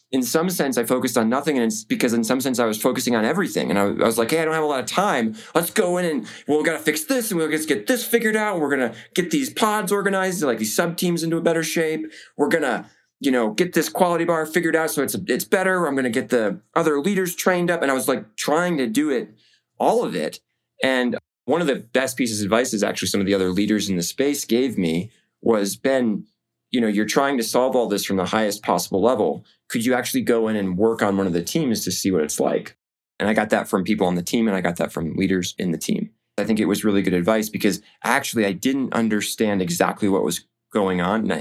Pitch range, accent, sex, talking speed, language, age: 100-160 Hz, American, male, 265 wpm, English, 20-39